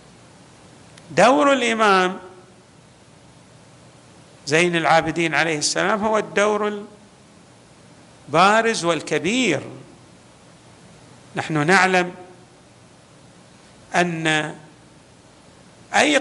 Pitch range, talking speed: 170-225 Hz, 50 wpm